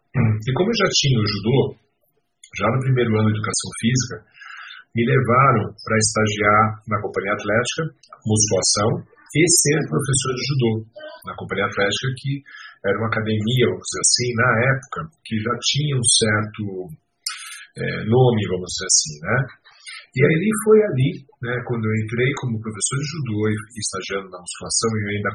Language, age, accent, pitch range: Portuguese, 50-69, Brazilian, 110-140 Hz